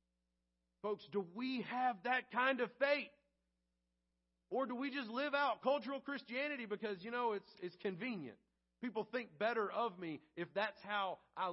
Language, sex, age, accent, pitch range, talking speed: English, male, 40-59, American, 175-240 Hz, 160 wpm